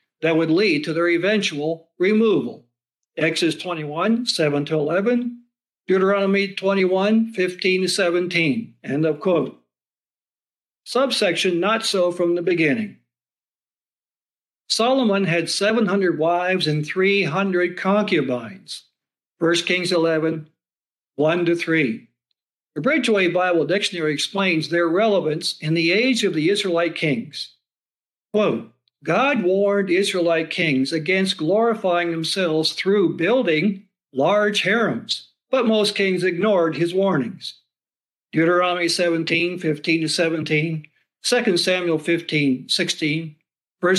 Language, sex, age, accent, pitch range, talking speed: English, male, 60-79, American, 165-195 Hz, 95 wpm